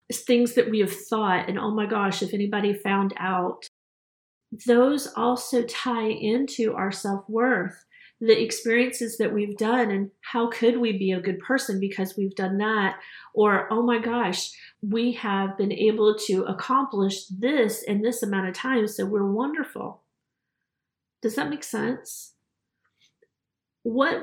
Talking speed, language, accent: 150 wpm, English, American